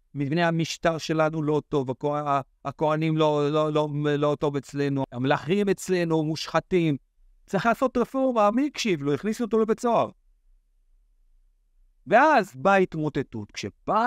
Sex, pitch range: male, 120-195 Hz